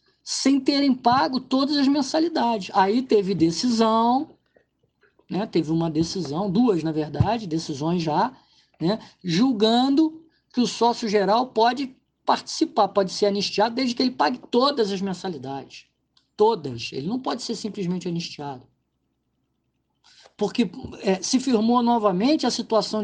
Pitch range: 200-255 Hz